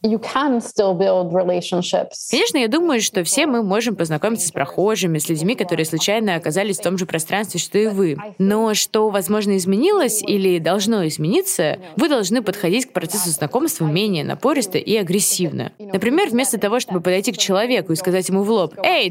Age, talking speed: 20-39, 165 wpm